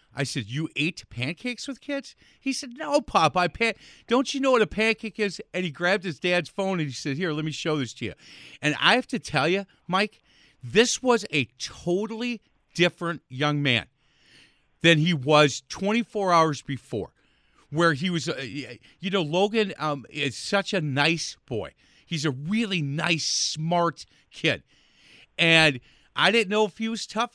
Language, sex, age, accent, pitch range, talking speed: English, male, 40-59, American, 150-220 Hz, 180 wpm